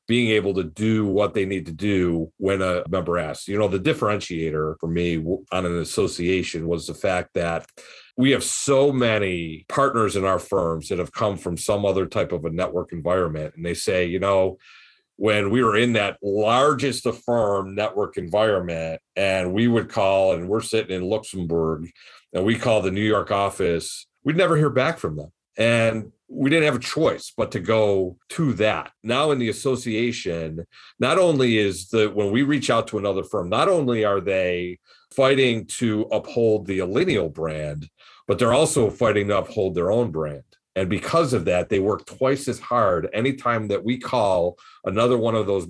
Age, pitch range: 40-59, 90-115 Hz